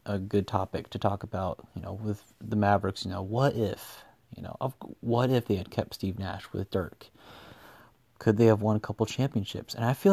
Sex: male